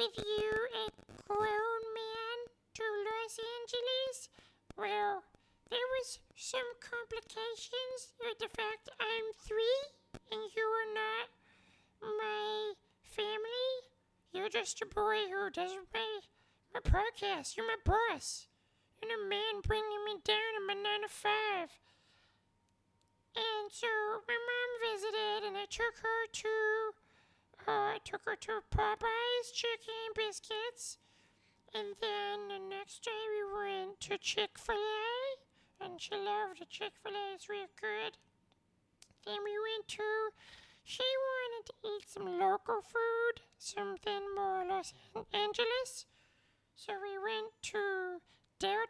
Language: English